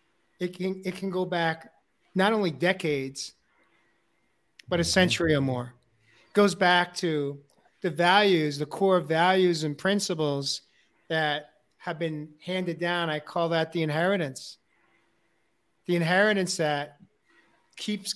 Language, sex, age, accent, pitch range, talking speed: English, male, 50-69, American, 155-190 Hz, 130 wpm